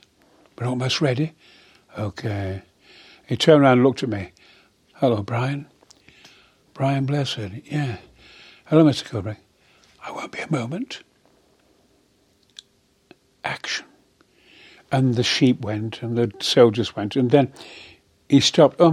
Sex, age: male, 60-79